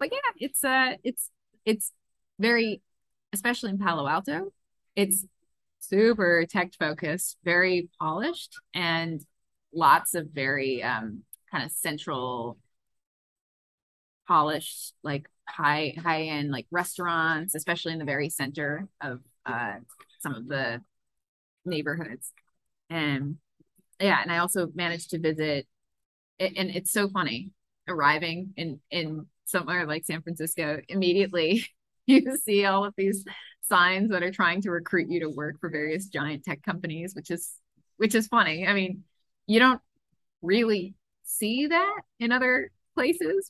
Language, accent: English, American